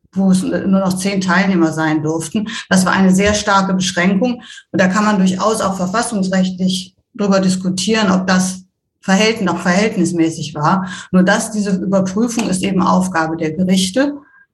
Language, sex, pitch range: German, female, 180-205 Hz